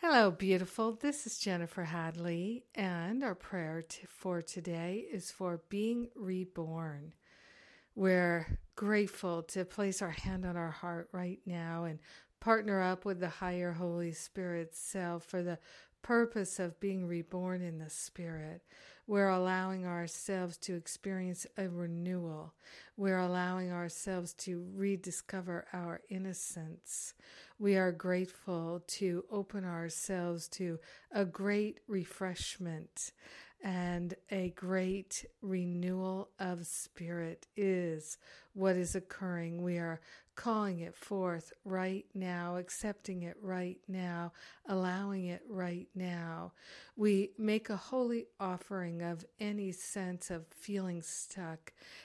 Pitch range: 175-195 Hz